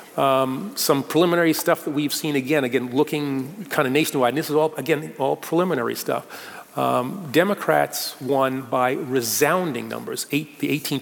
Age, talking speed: 40-59, 165 wpm